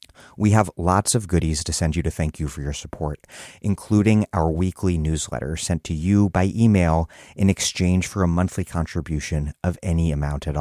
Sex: male